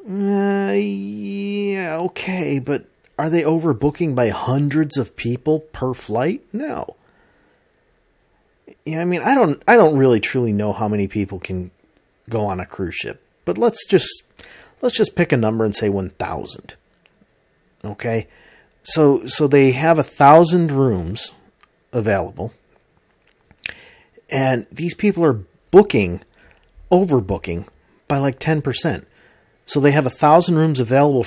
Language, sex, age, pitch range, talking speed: English, male, 40-59, 120-165 Hz, 135 wpm